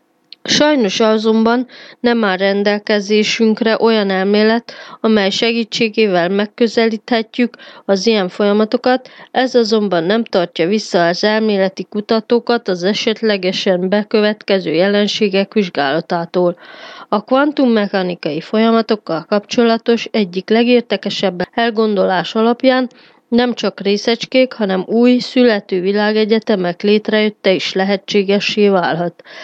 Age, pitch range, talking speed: 30-49, 195-235 Hz, 90 wpm